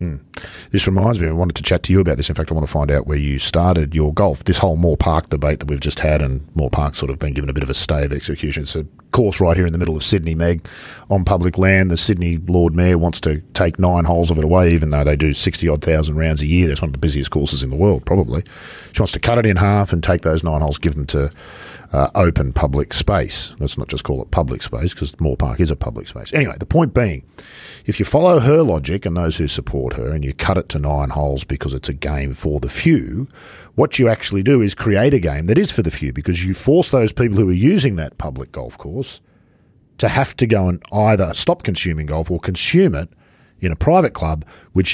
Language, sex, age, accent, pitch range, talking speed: English, male, 40-59, Australian, 75-100 Hz, 260 wpm